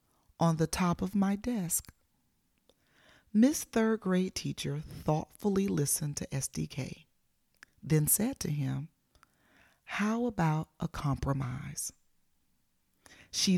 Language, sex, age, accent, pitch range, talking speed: English, female, 40-59, American, 150-215 Hz, 100 wpm